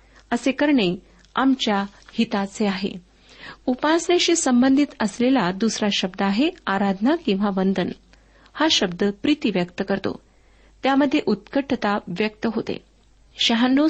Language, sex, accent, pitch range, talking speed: Marathi, female, native, 200-260 Hz, 100 wpm